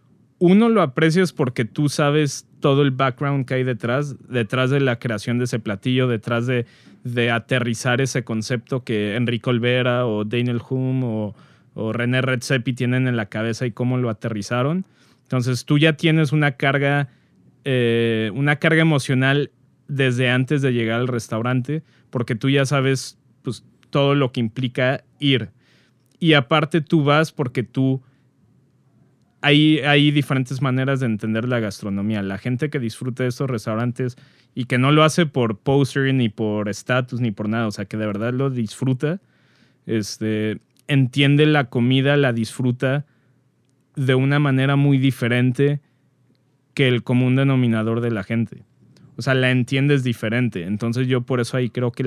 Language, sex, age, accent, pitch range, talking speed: Spanish, male, 30-49, Mexican, 120-140 Hz, 160 wpm